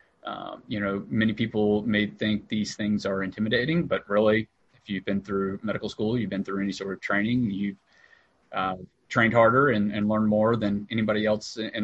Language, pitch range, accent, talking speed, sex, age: English, 100-115 Hz, American, 195 wpm, male, 30-49